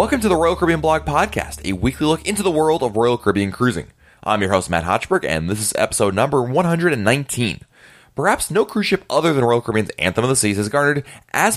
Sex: male